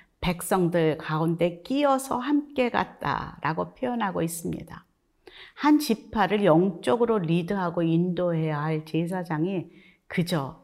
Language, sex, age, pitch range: Korean, female, 40-59, 160-210 Hz